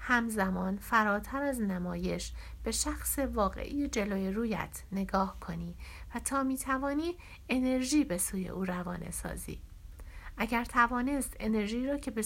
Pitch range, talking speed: 185-255 Hz, 130 wpm